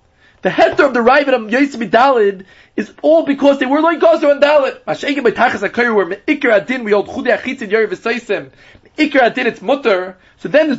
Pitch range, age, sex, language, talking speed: 215-275 Hz, 30-49, male, English, 115 wpm